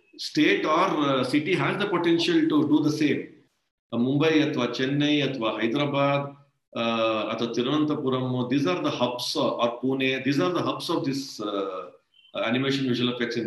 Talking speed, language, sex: 180 wpm, Kannada, male